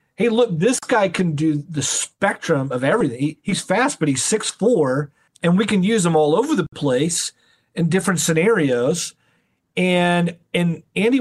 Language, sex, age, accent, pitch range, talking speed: English, male, 40-59, American, 150-185 Hz, 165 wpm